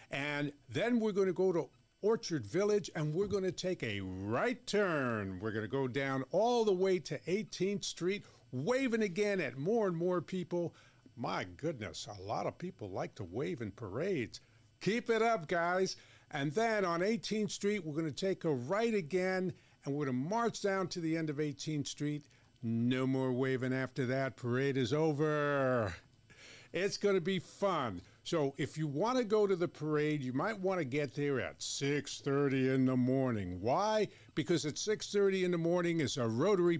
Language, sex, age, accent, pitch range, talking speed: English, male, 50-69, American, 125-185 Hz, 190 wpm